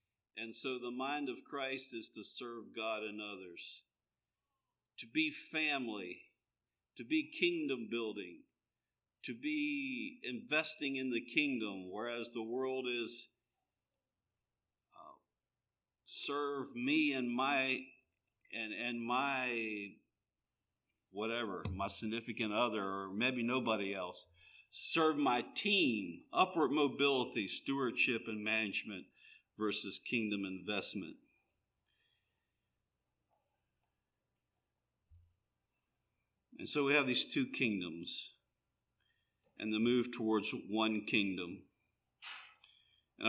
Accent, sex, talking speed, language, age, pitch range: American, male, 95 wpm, English, 50-69, 110-135 Hz